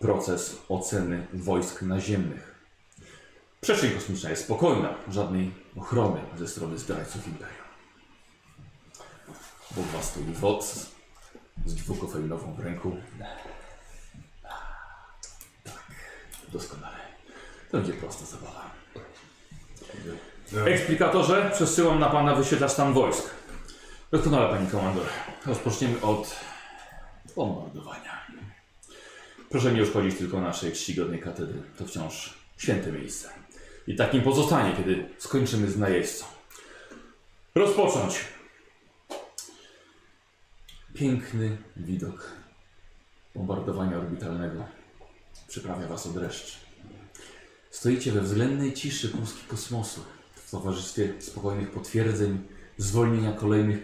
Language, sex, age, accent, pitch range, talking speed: Polish, male, 40-59, native, 90-115 Hz, 90 wpm